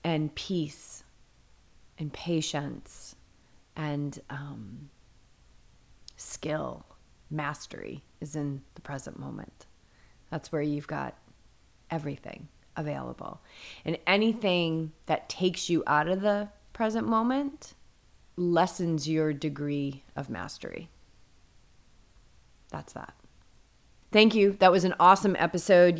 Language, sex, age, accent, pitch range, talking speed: English, female, 30-49, American, 160-205 Hz, 100 wpm